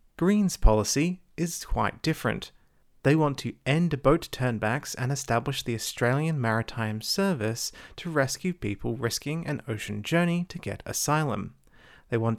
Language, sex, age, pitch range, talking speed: English, male, 30-49, 115-160 Hz, 140 wpm